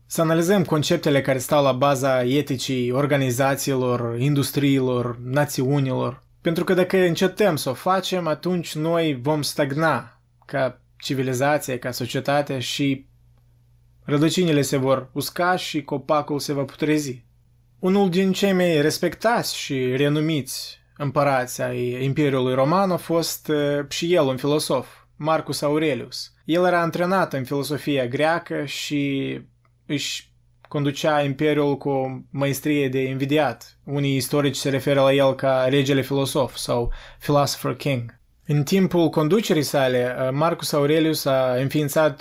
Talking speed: 130 wpm